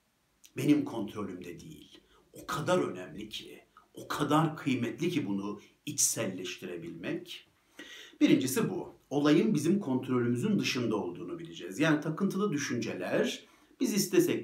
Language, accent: Turkish, native